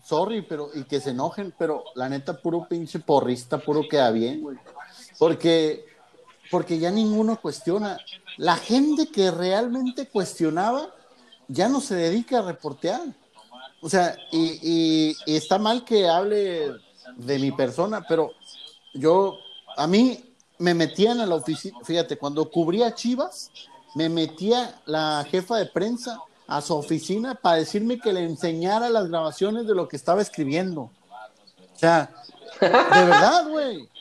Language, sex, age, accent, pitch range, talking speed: Spanish, male, 50-69, Mexican, 150-215 Hz, 145 wpm